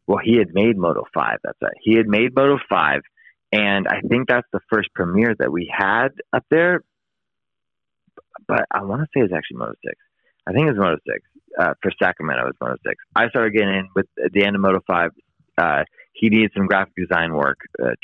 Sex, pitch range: male, 85-110 Hz